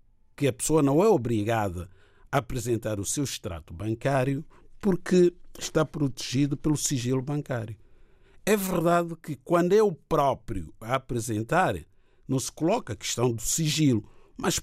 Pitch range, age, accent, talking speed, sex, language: 120-180 Hz, 60-79, Brazilian, 145 wpm, male, Portuguese